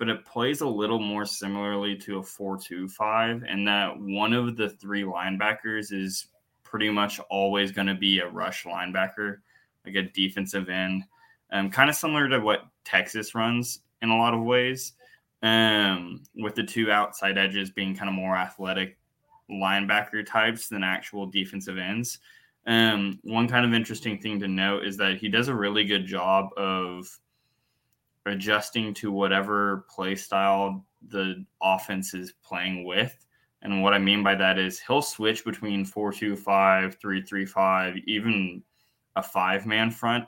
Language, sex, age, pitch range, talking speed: English, male, 10-29, 95-110 Hz, 155 wpm